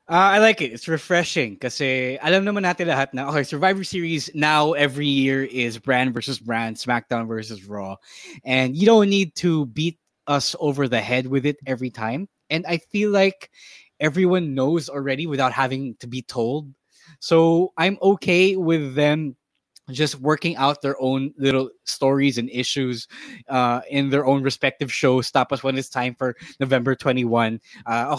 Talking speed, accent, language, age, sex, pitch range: 165 wpm, Filipino, English, 20-39, male, 115-155 Hz